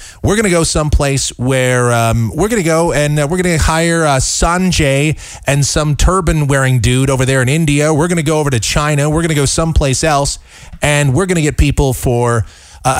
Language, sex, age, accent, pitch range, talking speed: English, male, 40-59, American, 100-150 Hz, 220 wpm